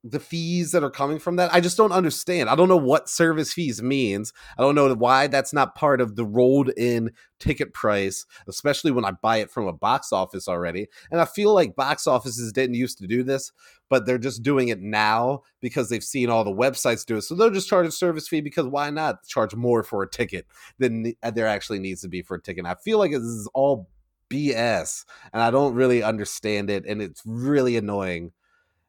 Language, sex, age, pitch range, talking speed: English, male, 30-49, 110-145 Hz, 220 wpm